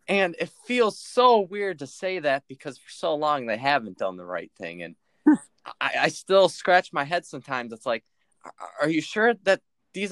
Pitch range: 135-185 Hz